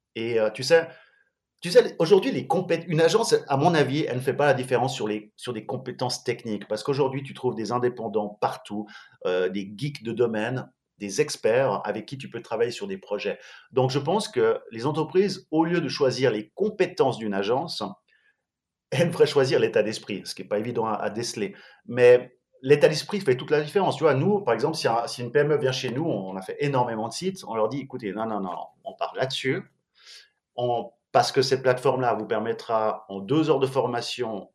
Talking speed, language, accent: 215 wpm, French, French